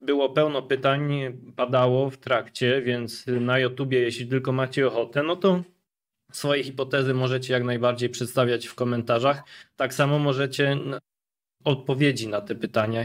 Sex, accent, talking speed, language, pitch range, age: male, native, 140 wpm, Polish, 115-140 Hz, 20-39